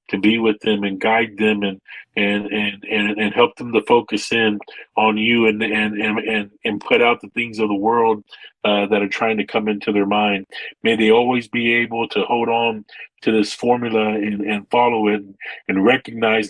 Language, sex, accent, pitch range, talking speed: English, male, American, 105-120 Hz, 205 wpm